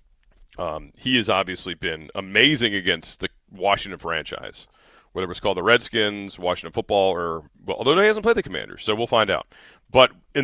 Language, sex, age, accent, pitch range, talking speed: English, male, 40-59, American, 100-130 Hz, 180 wpm